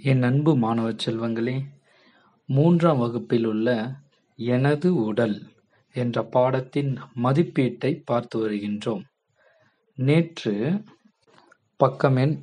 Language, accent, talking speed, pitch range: Tamil, native, 75 wpm, 120-170 Hz